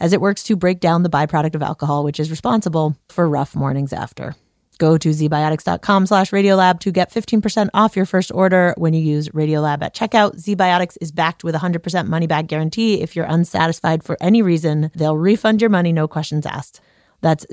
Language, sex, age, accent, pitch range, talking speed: English, female, 30-49, American, 160-220 Hz, 190 wpm